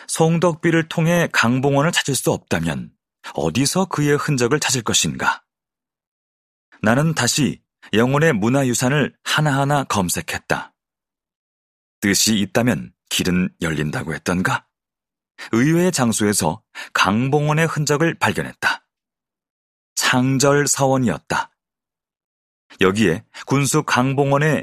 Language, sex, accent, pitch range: Korean, male, native, 110-145 Hz